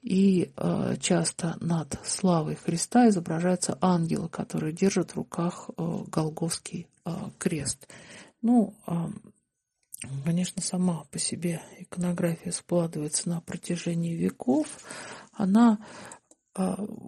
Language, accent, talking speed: Russian, native, 100 wpm